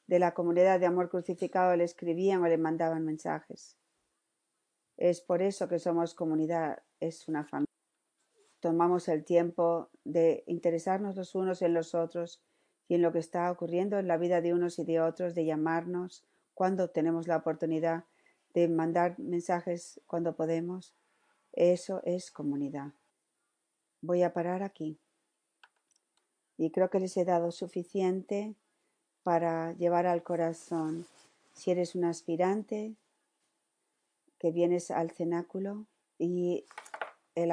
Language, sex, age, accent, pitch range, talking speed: Spanish, female, 40-59, Spanish, 170-185 Hz, 135 wpm